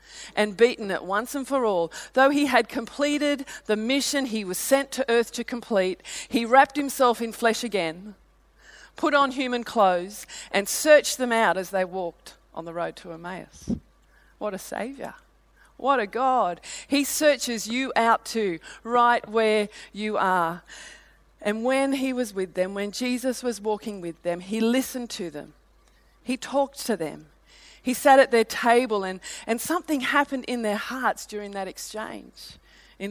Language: English